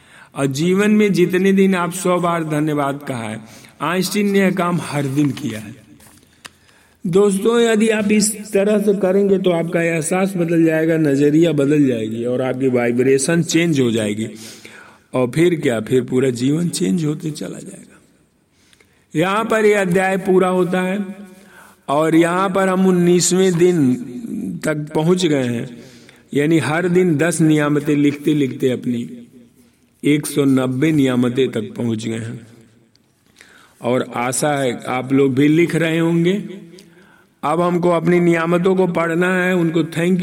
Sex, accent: male, native